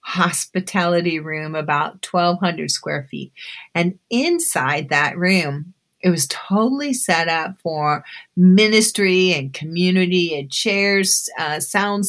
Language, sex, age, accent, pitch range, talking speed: English, female, 30-49, American, 160-225 Hz, 115 wpm